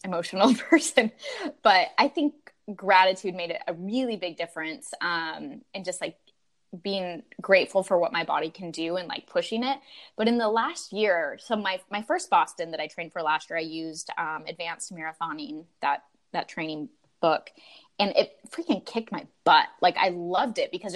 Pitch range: 170-235 Hz